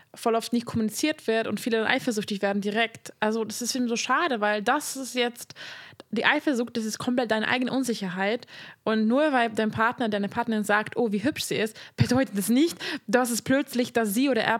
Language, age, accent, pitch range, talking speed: German, 20-39, German, 210-240 Hz, 215 wpm